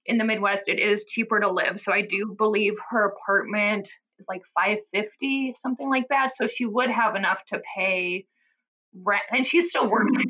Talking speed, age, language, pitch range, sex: 185 wpm, 20-39, English, 195-230 Hz, female